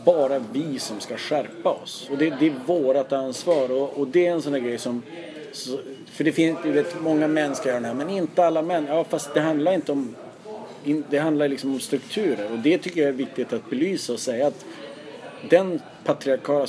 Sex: male